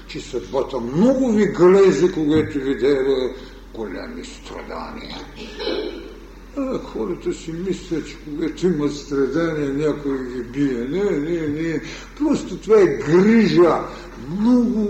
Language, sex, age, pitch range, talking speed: Bulgarian, male, 60-79, 165-215 Hz, 115 wpm